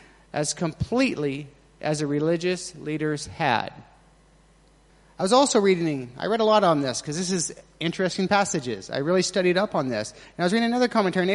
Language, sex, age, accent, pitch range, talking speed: English, male, 30-49, American, 170-215 Hz, 185 wpm